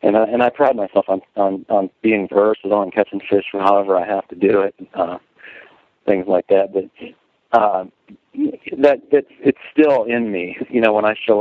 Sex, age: male, 40-59